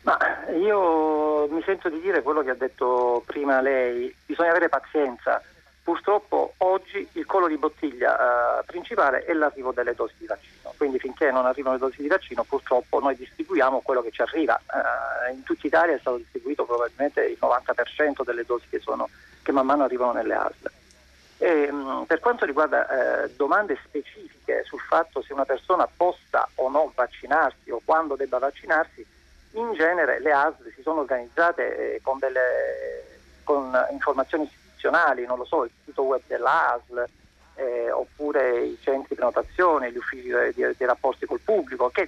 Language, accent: Italian, native